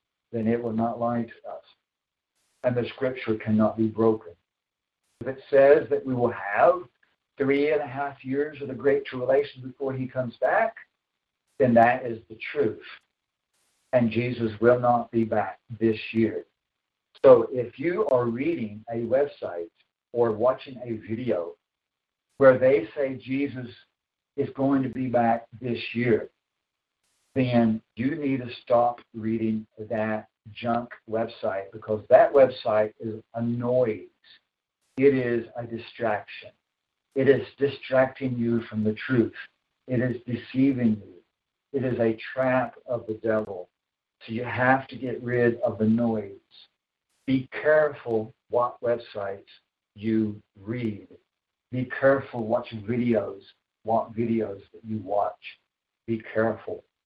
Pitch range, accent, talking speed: 110-130 Hz, American, 140 wpm